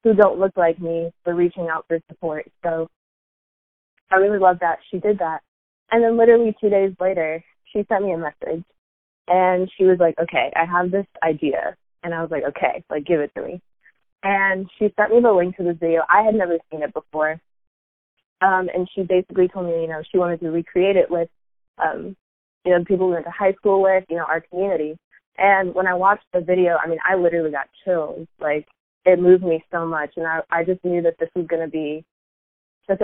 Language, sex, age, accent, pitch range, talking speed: English, female, 20-39, American, 160-185 Hz, 220 wpm